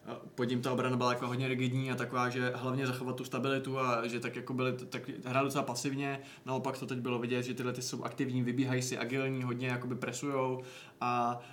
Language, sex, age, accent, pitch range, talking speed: Czech, male, 20-39, native, 125-140 Hz, 205 wpm